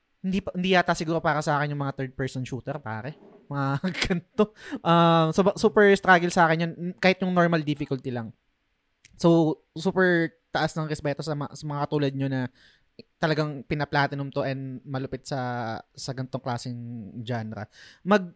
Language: Filipino